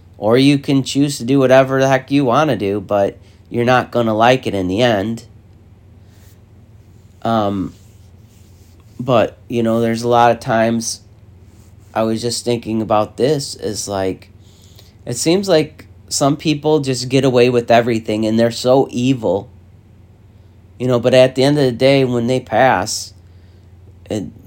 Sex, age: male, 30-49